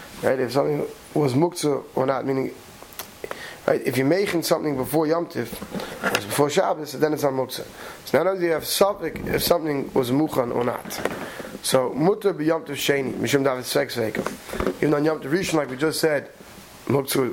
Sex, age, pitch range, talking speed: male, 30-49, 145-185 Hz, 180 wpm